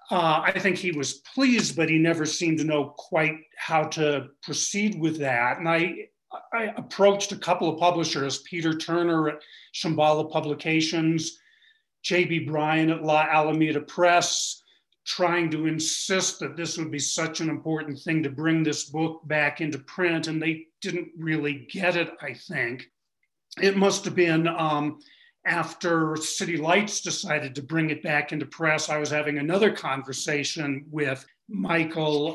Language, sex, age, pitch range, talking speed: English, male, 40-59, 155-180 Hz, 160 wpm